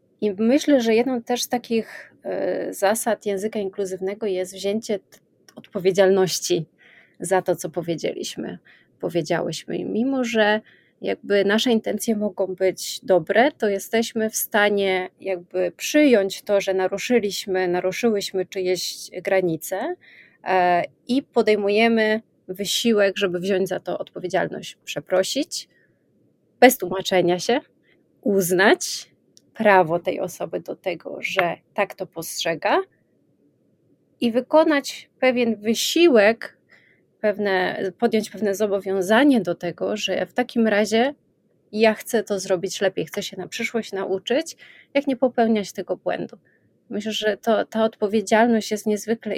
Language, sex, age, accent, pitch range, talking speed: Polish, female, 30-49, native, 190-230 Hz, 120 wpm